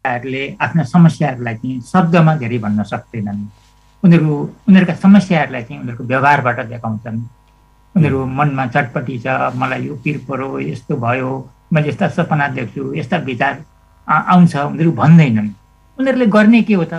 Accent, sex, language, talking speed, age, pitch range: Indian, male, English, 125 wpm, 60-79, 130-175 Hz